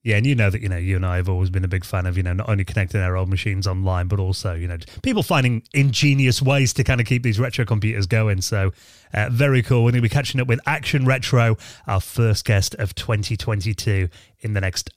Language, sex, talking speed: English, male, 255 wpm